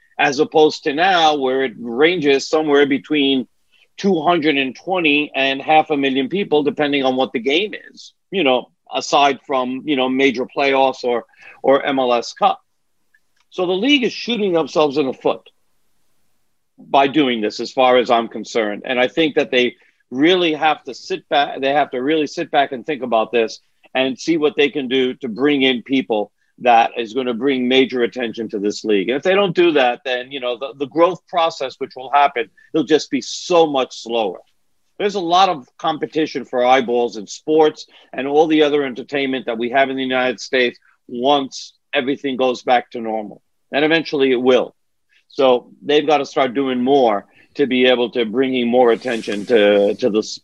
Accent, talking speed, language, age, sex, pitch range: American, 190 wpm, English, 50-69, male, 125-155 Hz